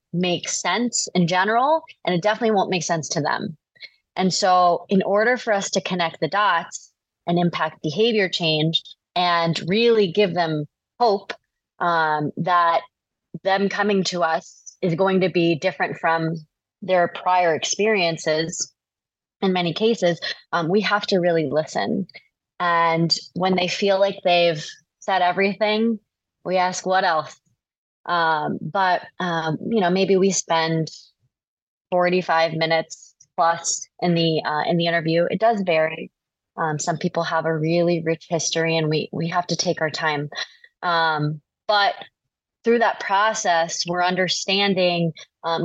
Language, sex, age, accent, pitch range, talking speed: English, female, 20-39, American, 165-195 Hz, 145 wpm